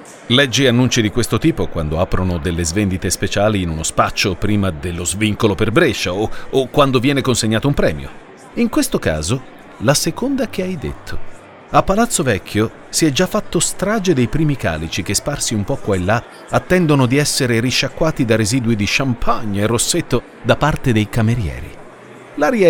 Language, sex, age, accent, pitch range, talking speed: Italian, male, 40-59, native, 105-150 Hz, 175 wpm